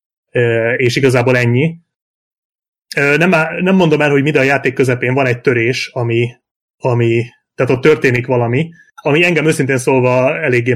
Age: 30-49